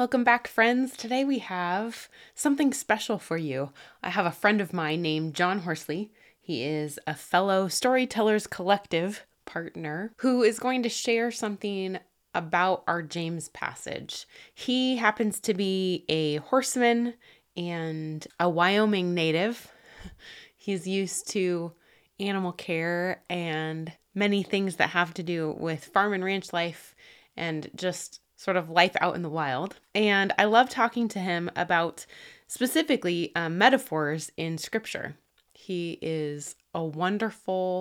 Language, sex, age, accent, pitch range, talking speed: English, female, 20-39, American, 160-210 Hz, 140 wpm